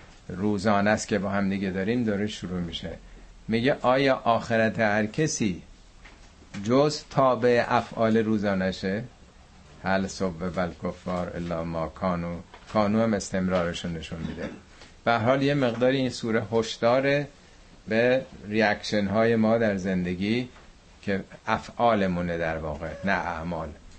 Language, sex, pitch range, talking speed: Persian, male, 90-110 Hz, 135 wpm